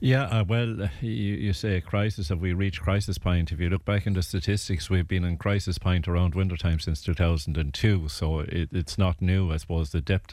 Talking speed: 220 wpm